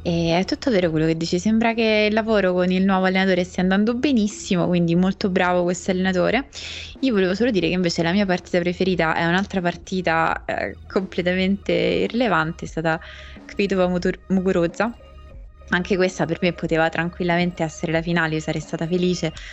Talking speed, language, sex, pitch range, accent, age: 170 wpm, Italian, female, 165-195 Hz, native, 20-39